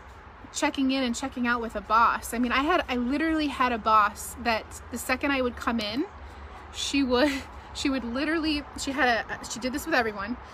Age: 20-39